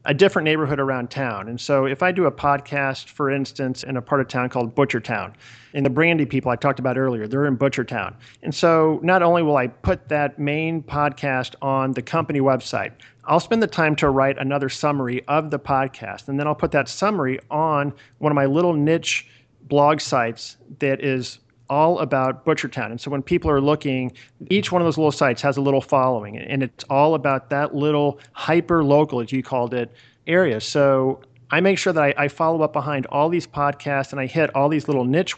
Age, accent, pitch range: 40-59, American, 125-150 Hz